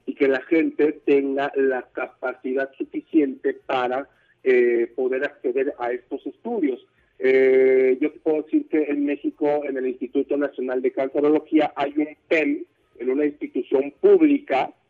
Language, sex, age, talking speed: Spanish, male, 50-69, 140 wpm